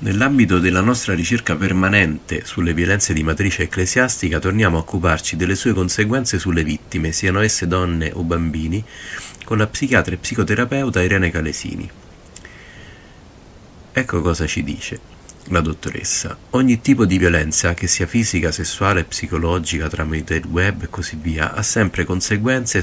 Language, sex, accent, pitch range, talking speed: Italian, male, native, 85-110 Hz, 140 wpm